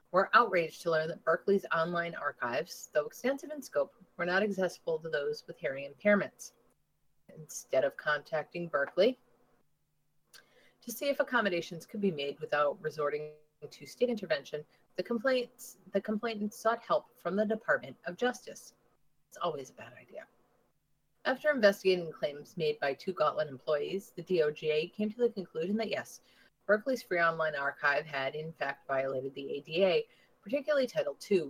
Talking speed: 155 wpm